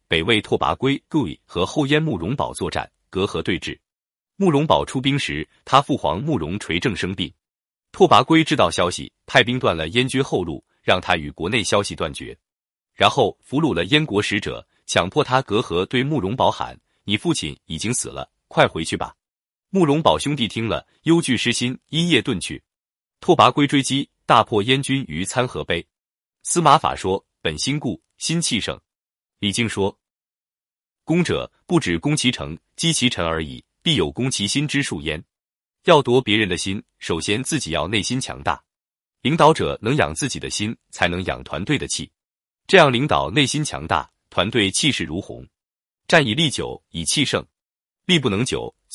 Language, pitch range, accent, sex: Chinese, 100-150 Hz, native, male